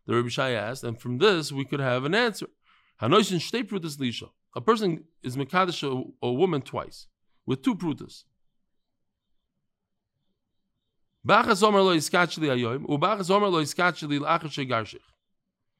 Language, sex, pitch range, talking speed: English, male, 125-180 Hz, 85 wpm